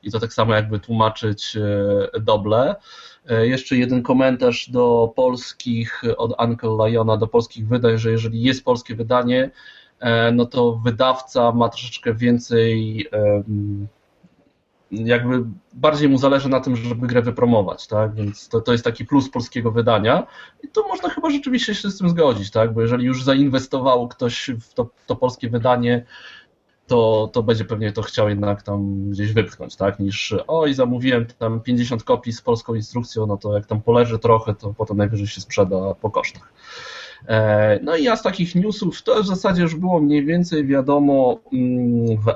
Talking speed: 165 wpm